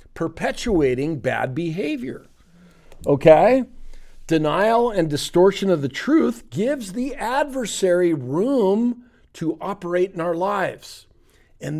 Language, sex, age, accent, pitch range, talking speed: English, male, 50-69, American, 130-200 Hz, 100 wpm